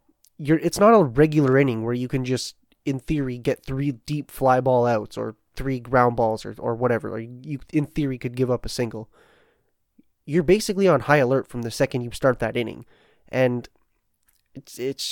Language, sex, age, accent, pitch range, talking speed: English, male, 20-39, American, 120-155 Hz, 200 wpm